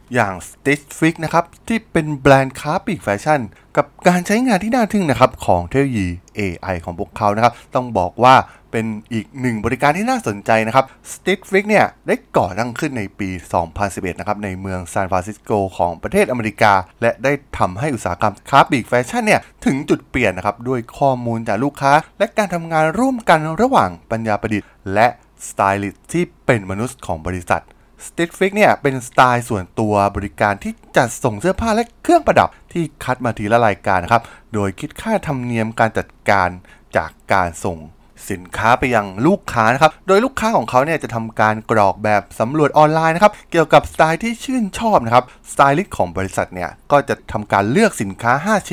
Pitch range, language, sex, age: 105-160 Hz, Thai, male, 20-39